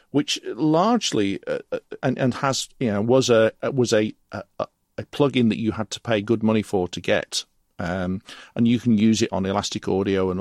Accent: British